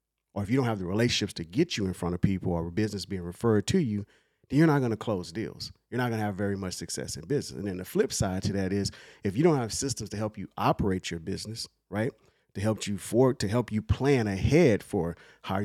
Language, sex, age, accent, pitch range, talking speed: English, male, 40-59, American, 95-120 Hz, 265 wpm